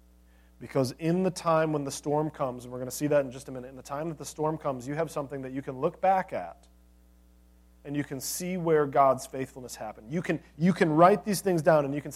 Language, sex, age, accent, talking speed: English, male, 40-59, American, 260 wpm